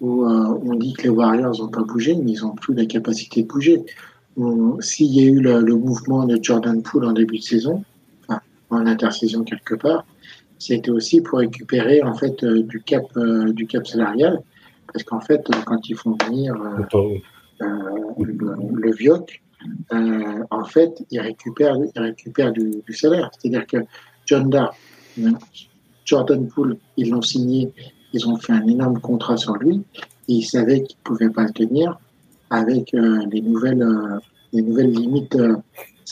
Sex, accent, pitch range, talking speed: male, French, 115-140 Hz, 180 wpm